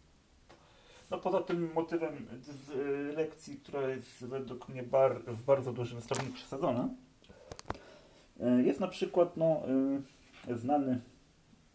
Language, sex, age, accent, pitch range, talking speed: Polish, male, 40-59, native, 95-135 Hz, 105 wpm